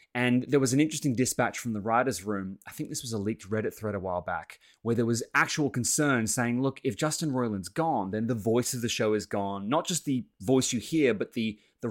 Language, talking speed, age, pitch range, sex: English, 245 wpm, 20-39, 110-150 Hz, male